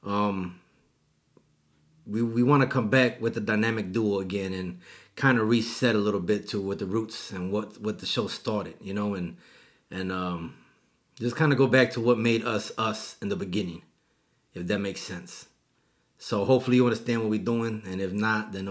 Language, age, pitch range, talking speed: English, 30-49, 105-120 Hz, 200 wpm